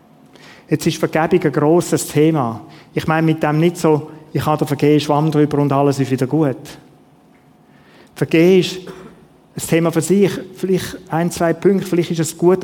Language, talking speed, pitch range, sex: German, 175 wpm, 140-170 Hz, male